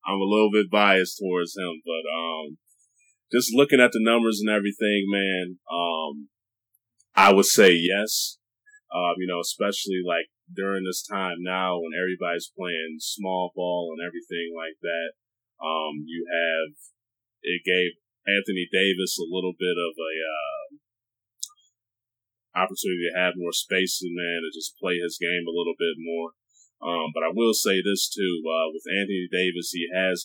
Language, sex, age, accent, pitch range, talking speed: English, male, 20-39, American, 85-105 Hz, 165 wpm